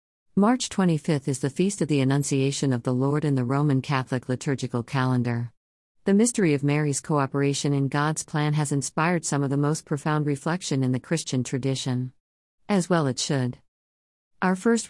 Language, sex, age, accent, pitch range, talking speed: Malayalam, female, 50-69, American, 130-155 Hz, 175 wpm